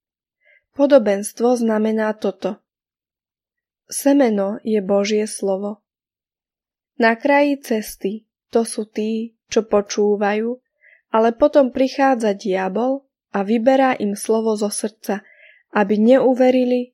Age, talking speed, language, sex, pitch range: 20-39, 95 wpm, Slovak, female, 205-255 Hz